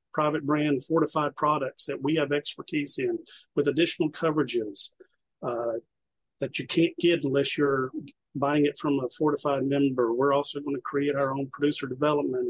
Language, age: English, 50-69